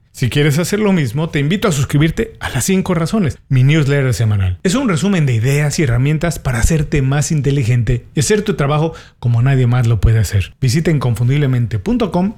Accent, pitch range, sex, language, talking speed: Mexican, 120-165 Hz, male, Spanish, 190 wpm